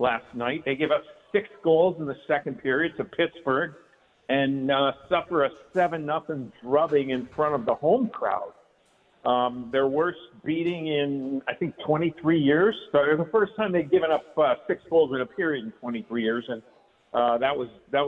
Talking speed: 195 wpm